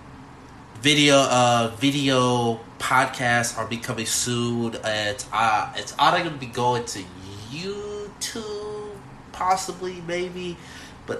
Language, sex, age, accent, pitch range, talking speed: English, male, 20-39, American, 105-130 Hz, 115 wpm